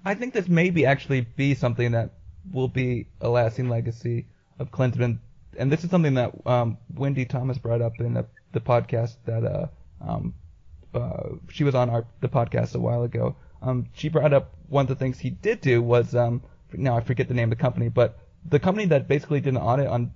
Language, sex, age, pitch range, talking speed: English, male, 20-39, 115-140 Hz, 215 wpm